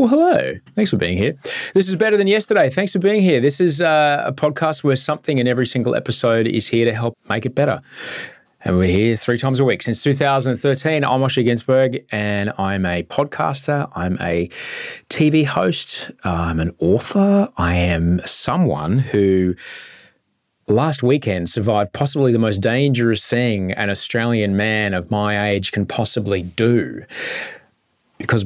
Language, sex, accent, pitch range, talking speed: English, male, Australian, 105-145 Hz, 160 wpm